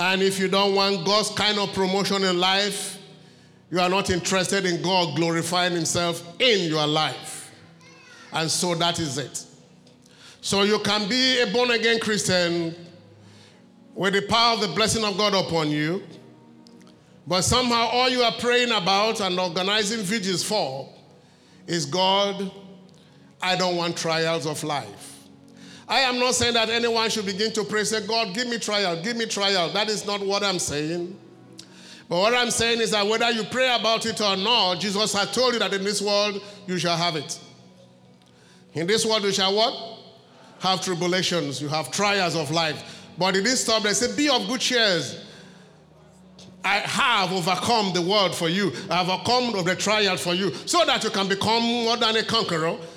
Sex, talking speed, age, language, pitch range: male, 180 wpm, 50-69, English, 170-220 Hz